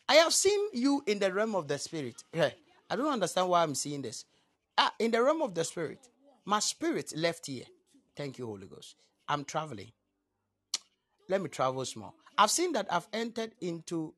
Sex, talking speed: male, 185 wpm